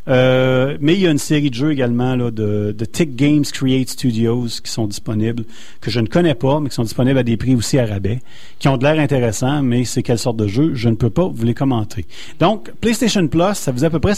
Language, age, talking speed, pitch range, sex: French, 40-59, 265 wpm, 115-145 Hz, male